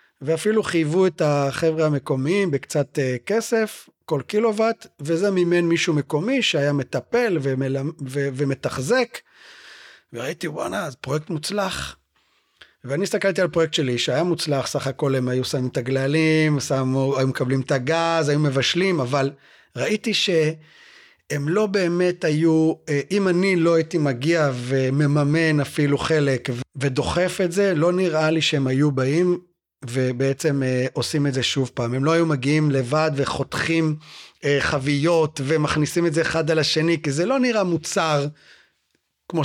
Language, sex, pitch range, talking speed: Hebrew, male, 135-175 Hz, 140 wpm